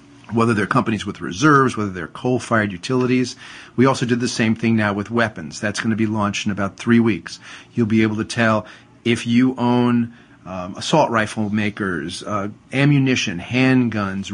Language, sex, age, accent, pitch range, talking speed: English, male, 40-59, American, 110-130 Hz, 175 wpm